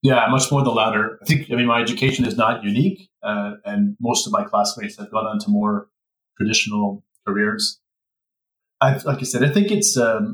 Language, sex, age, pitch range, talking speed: English, male, 30-49, 115-185 Hz, 205 wpm